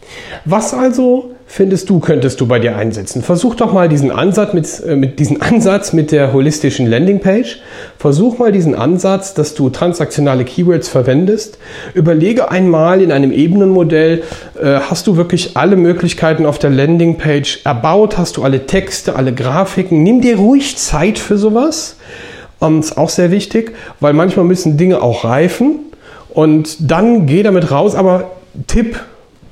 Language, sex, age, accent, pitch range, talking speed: German, male, 40-59, German, 155-205 Hz, 150 wpm